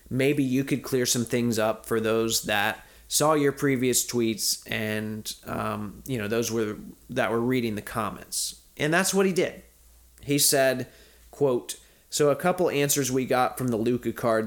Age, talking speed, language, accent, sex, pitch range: 30-49, 180 wpm, English, American, male, 105-130 Hz